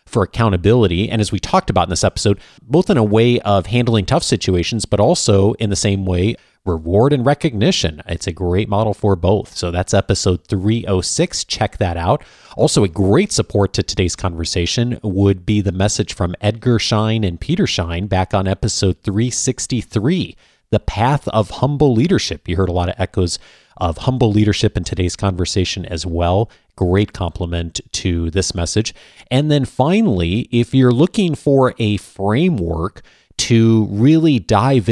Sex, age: male, 30-49